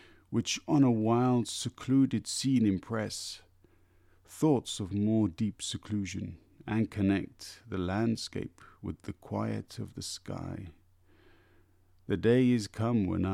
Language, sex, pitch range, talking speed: English, male, 90-110 Hz, 120 wpm